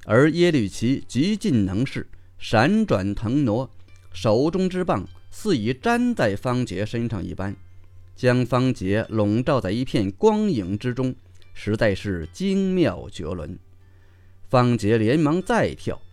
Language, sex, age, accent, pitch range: Chinese, male, 30-49, native, 95-140 Hz